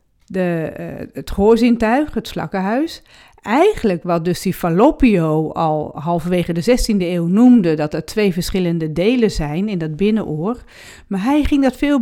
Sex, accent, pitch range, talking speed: female, Dutch, 180-255 Hz, 145 wpm